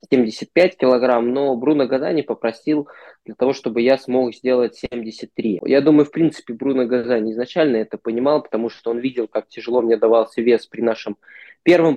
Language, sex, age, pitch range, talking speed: Russian, male, 20-39, 115-135 Hz, 170 wpm